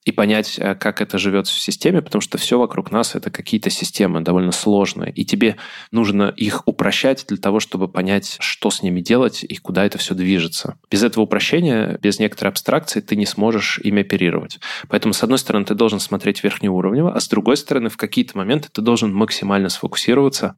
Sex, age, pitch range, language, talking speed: male, 20-39, 95-110 Hz, Russian, 190 wpm